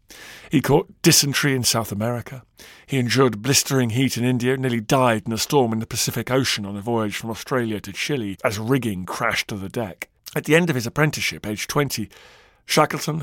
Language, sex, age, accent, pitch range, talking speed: English, male, 50-69, British, 110-135 Hz, 195 wpm